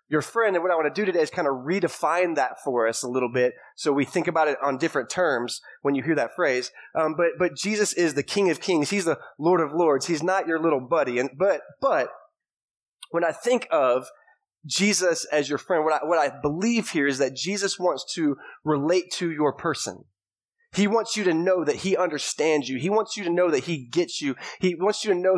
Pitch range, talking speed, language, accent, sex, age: 145-185 Hz, 235 wpm, English, American, male, 20-39